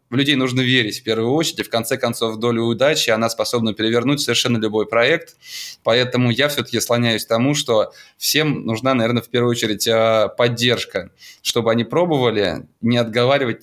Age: 20-39